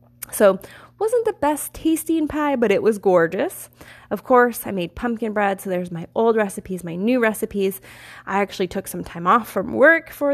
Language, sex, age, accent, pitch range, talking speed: English, female, 20-39, American, 175-215 Hz, 190 wpm